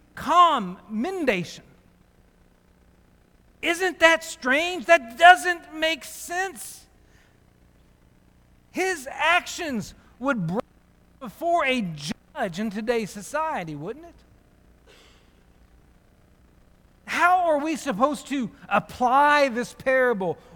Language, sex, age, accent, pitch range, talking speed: English, male, 50-69, American, 180-255 Hz, 80 wpm